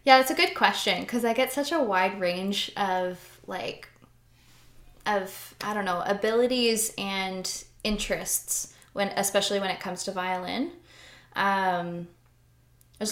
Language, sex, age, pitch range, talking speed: English, female, 20-39, 180-210 Hz, 135 wpm